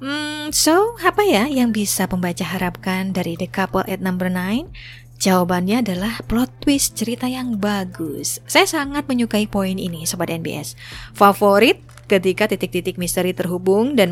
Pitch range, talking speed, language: 180-230 Hz, 145 wpm, Indonesian